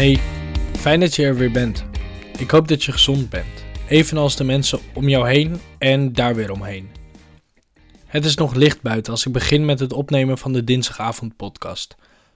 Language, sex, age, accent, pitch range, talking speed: Dutch, male, 20-39, Dutch, 120-150 Hz, 180 wpm